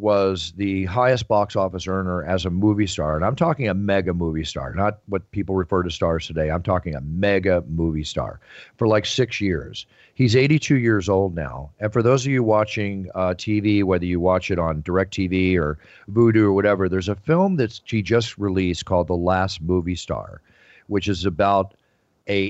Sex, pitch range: male, 90-110 Hz